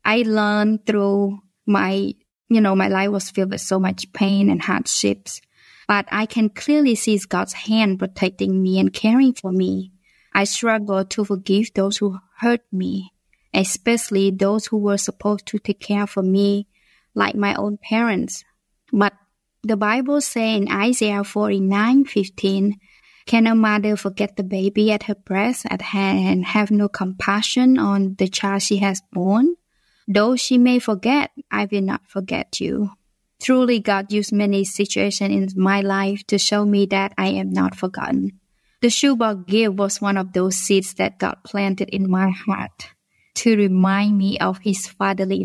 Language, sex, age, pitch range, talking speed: English, female, 20-39, 190-210 Hz, 165 wpm